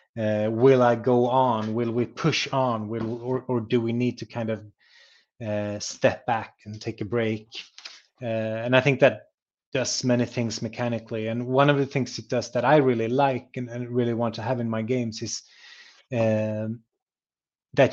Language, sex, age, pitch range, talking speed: English, male, 30-49, 115-130 Hz, 190 wpm